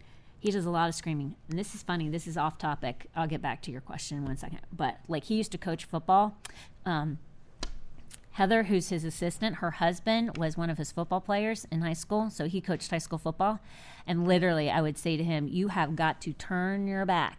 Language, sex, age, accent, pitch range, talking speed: English, female, 30-49, American, 155-195 Hz, 230 wpm